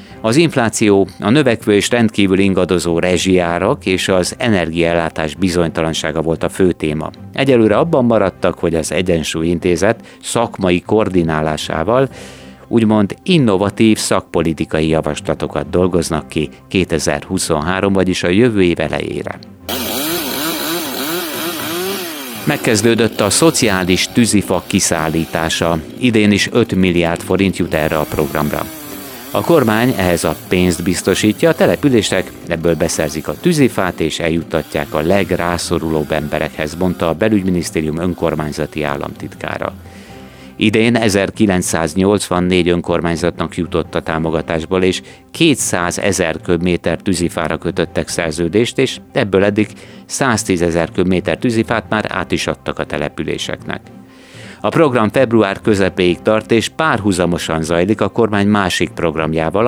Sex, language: male, Hungarian